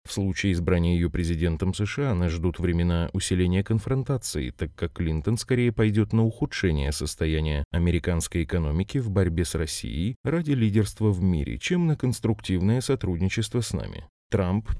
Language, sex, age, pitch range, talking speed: Russian, male, 20-39, 85-115 Hz, 150 wpm